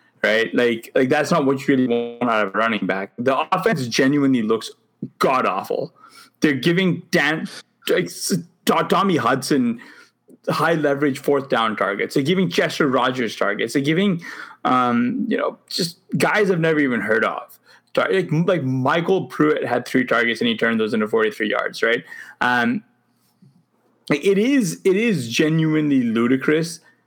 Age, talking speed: 20-39, 155 wpm